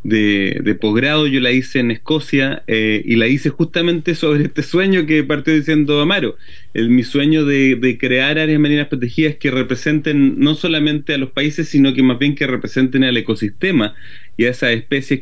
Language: Spanish